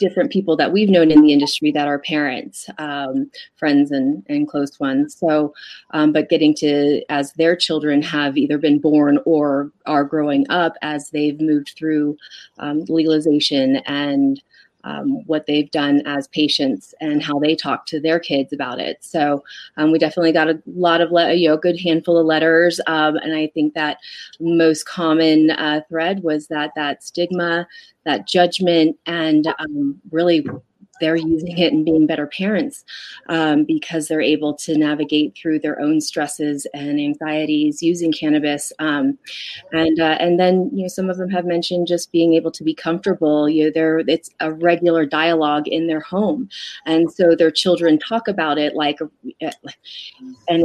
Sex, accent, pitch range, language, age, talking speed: female, American, 150-170 Hz, English, 30-49, 175 wpm